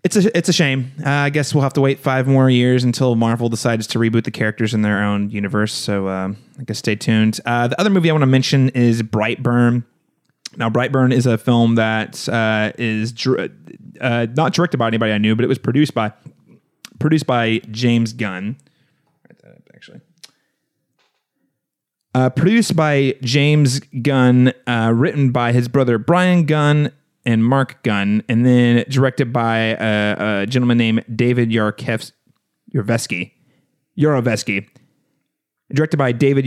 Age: 30-49